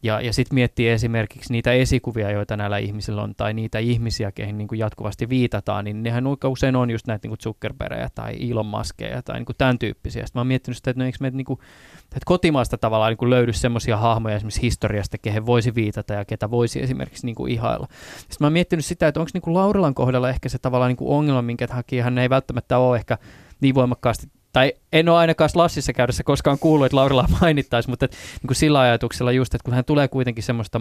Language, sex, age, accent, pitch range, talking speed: Finnish, male, 20-39, native, 110-130 Hz, 200 wpm